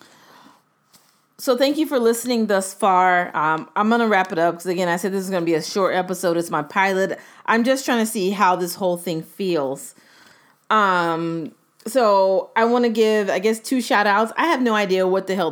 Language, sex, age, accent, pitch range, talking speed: English, female, 30-49, American, 170-215 Hz, 220 wpm